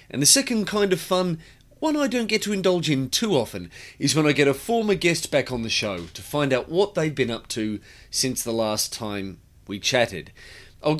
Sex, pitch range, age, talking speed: male, 110-160 Hz, 30-49, 225 wpm